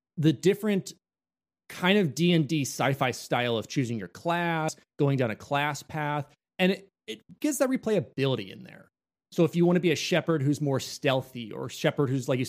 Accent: American